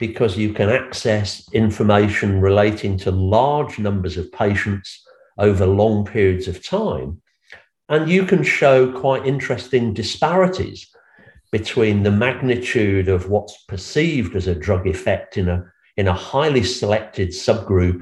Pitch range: 95-120 Hz